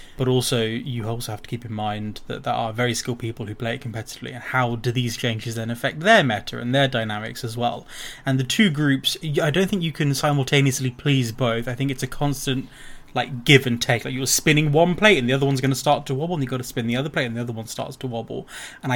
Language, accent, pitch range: English, British, 120-140 Hz